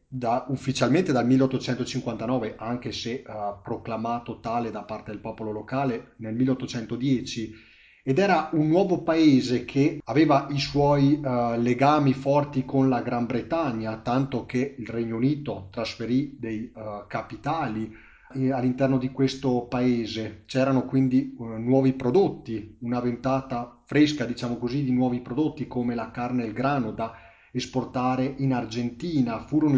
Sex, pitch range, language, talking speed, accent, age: male, 115-135 Hz, Italian, 140 wpm, native, 30-49